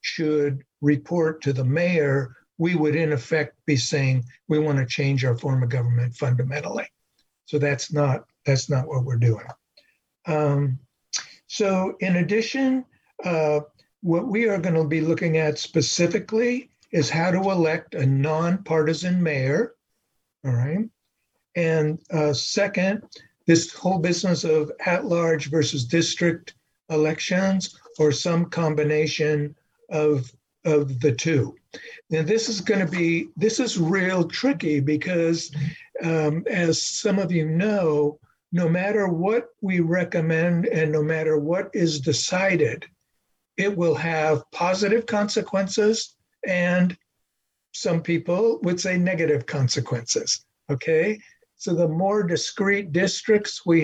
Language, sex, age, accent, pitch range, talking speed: English, male, 60-79, American, 150-185 Hz, 130 wpm